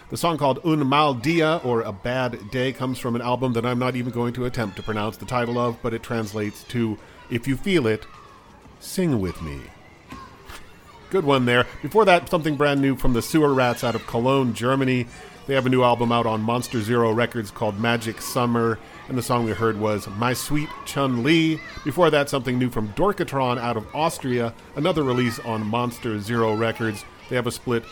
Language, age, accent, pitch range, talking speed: English, 40-59, American, 110-135 Hz, 200 wpm